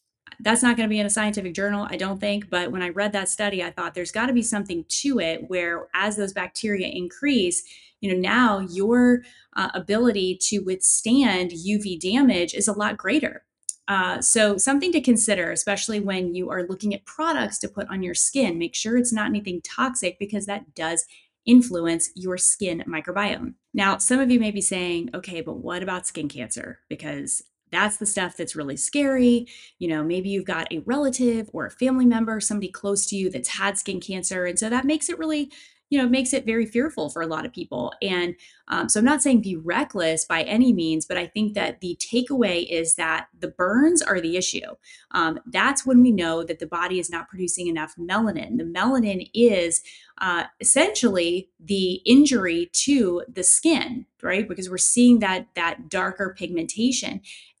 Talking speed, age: 195 wpm, 20-39